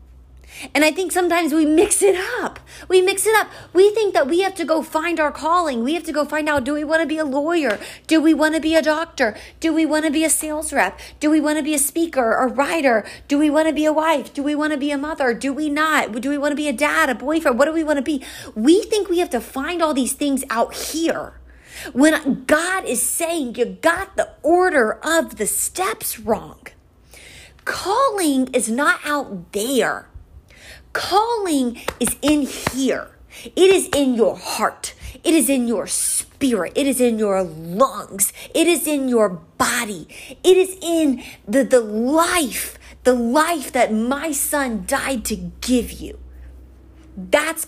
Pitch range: 245-320 Hz